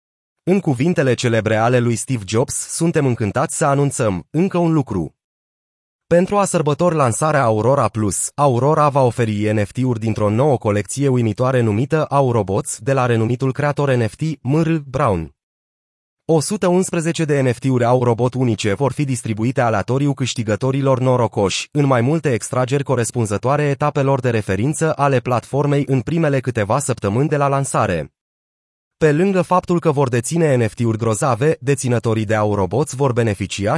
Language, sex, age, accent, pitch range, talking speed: Romanian, male, 30-49, native, 115-150 Hz, 140 wpm